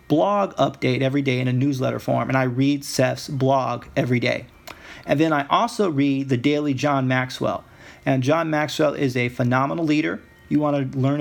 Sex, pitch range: male, 130-150 Hz